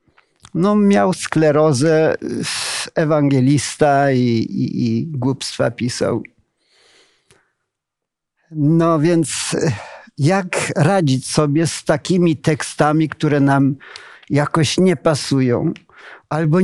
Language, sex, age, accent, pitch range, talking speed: Polish, male, 50-69, native, 125-160 Hz, 80 wpm